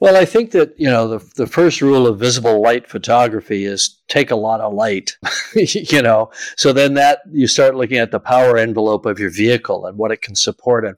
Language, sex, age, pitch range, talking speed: English, male, 50-69, 110-130 Hz, 225 wpm